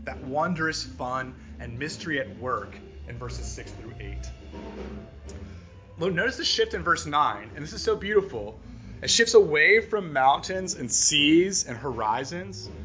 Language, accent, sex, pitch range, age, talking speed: English, American, male, 100-160 Hz, 30-49, 150 wpm